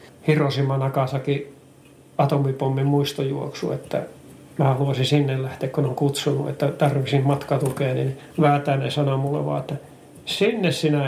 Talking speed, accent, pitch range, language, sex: 120 wpm, native, 140-155 Hz, Finnish, male